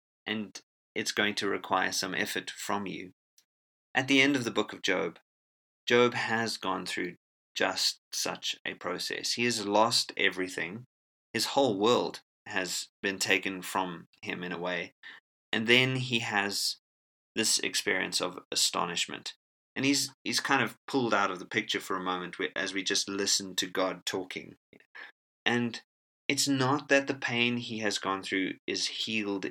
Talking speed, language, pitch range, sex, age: 165 wpm, English, 90-120 Hz, male, 30-49